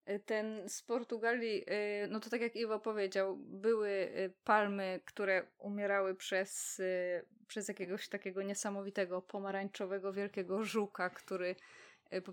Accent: native